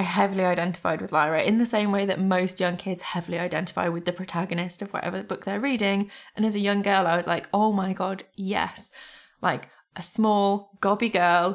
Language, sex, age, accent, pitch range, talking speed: English, female, 20-39, British, 180-215 Hz, 205 wpm